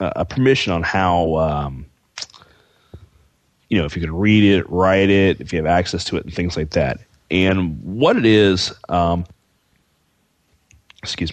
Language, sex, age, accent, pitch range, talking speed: English, male, 30-49, American, 85-105 Hz, 160 wpm